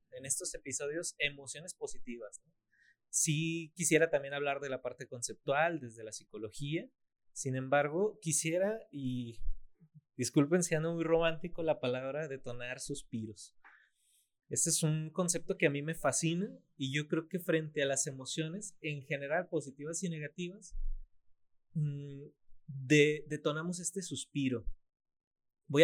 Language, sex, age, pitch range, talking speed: Spanish, male, 30-49, 125-165 Hz, 135 wpm